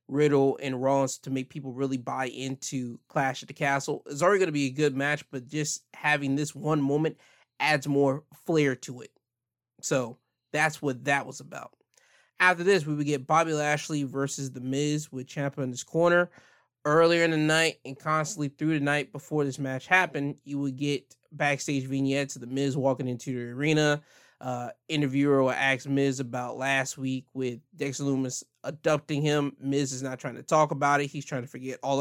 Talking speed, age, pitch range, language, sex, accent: 195 wpm, 20-39, 130-150 Hz, English, male, American